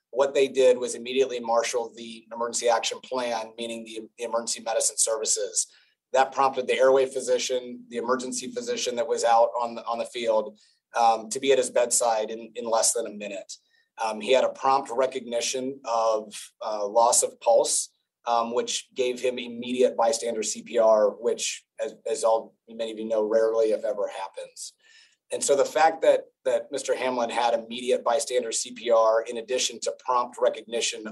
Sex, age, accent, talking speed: male, 30-49, American, 170 wpm